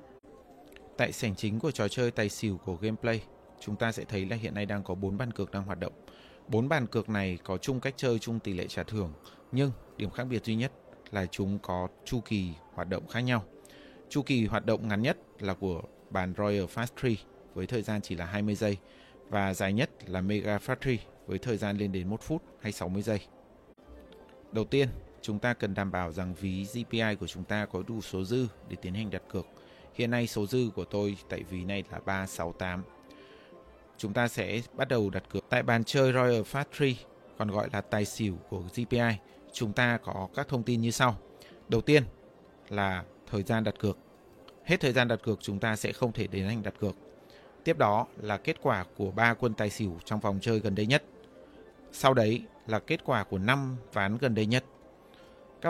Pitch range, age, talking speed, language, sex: 100-120 Hz, 20-39, 210 wpm, Vietnamese, male